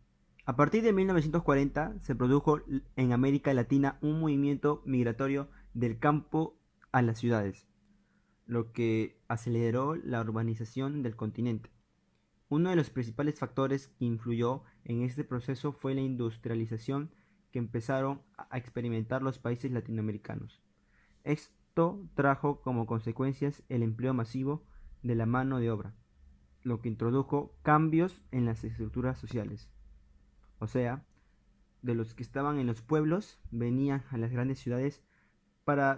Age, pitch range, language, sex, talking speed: 20-39, 115-140 Hz, Spanish, male, 130 wpm